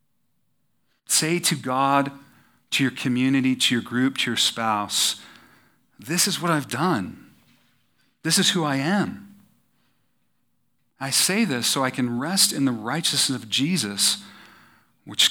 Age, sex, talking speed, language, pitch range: 40-59, male, 135 wpm, English, 120-165 Hz